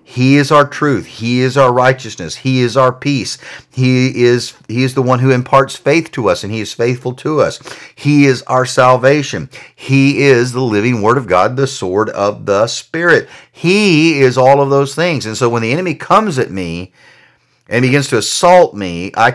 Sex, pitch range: male, 105-140 Hz